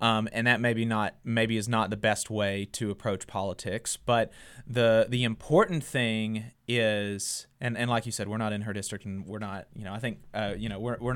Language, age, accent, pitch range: English, 20-39, American, 110-140 Hz